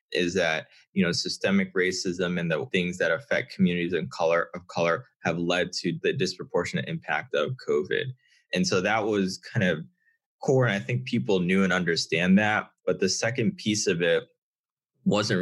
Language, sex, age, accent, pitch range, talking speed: English, male, 20-39, American, 90-125 Hz, 175 wpm